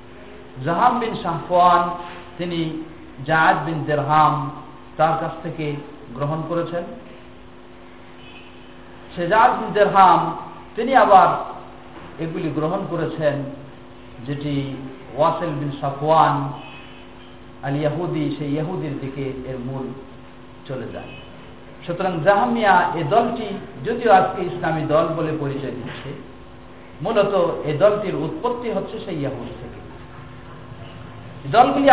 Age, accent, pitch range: 50-69, native, 140-185 Hz